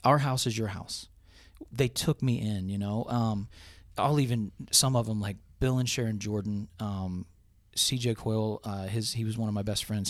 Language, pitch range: English, 105-120 Hz